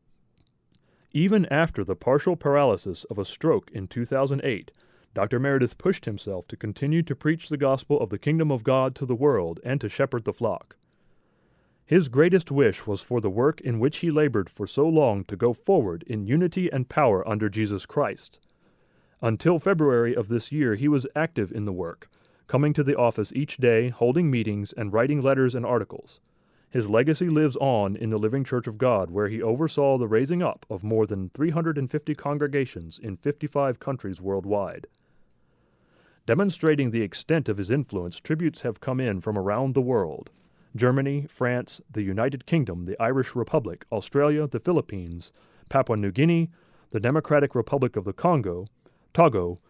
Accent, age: American, 30-49